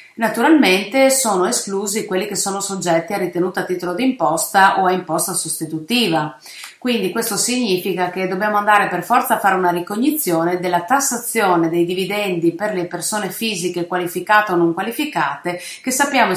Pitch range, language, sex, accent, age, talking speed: 175-225 Hz, Italian, female, native, 30-49, 160 wpm